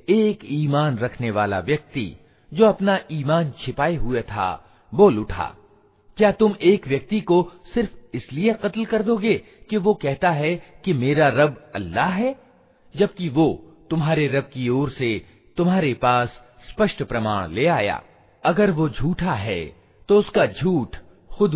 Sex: male